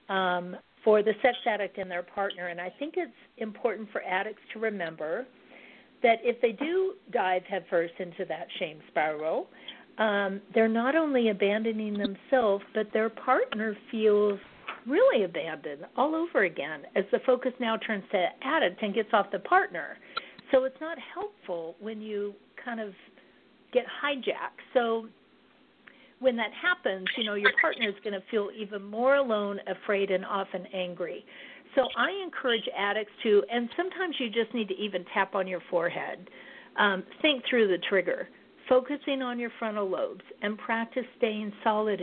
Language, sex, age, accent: English, female, 50-69, American